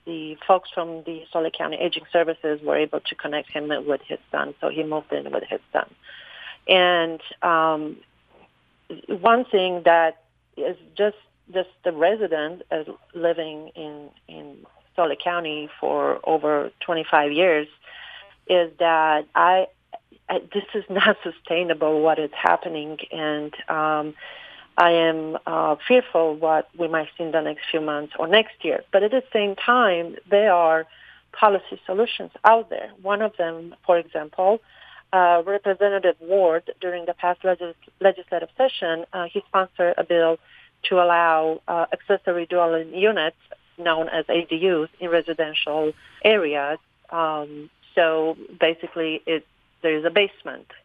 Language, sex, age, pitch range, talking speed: English, female, 40-59, 160-185 Hz, 145 wpm